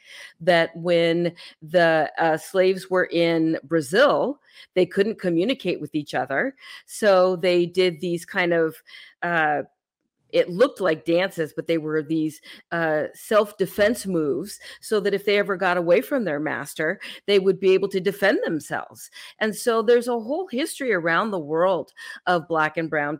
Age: 40-59